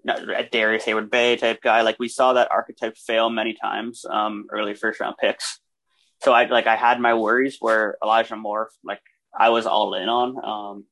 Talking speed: 190 wpm